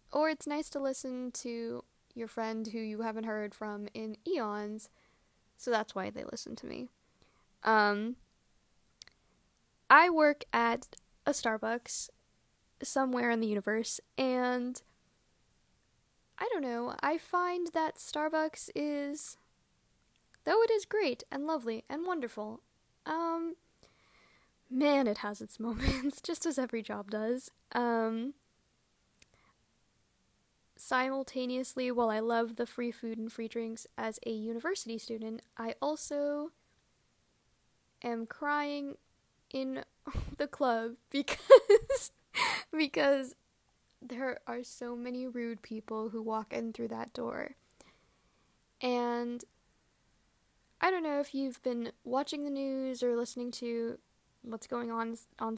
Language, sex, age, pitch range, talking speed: English, female, 10-29, 225-285 Hz, 120 wpm